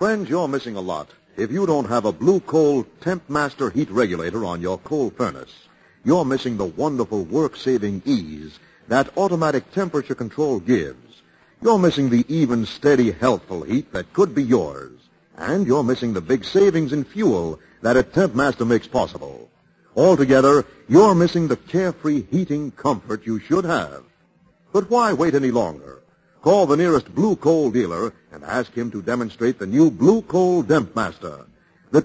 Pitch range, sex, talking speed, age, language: 120-170 Hz, male, 165 wpm, 50-69, English